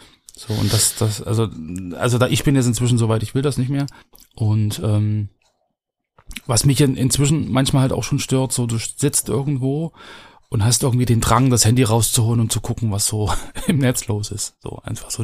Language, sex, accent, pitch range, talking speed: German, male, German, 105-120 Hz, 200 wpm